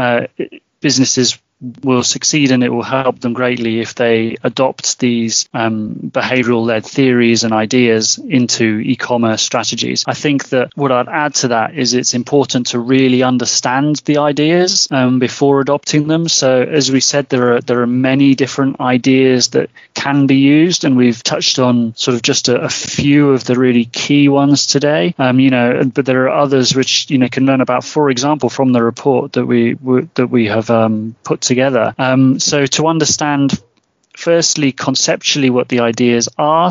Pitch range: 125-145 Hz